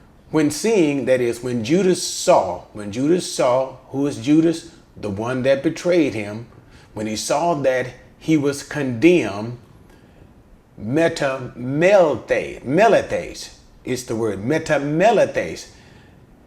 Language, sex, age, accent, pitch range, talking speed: English, male, 30-49, American, 115-155 Hz, 115 wpm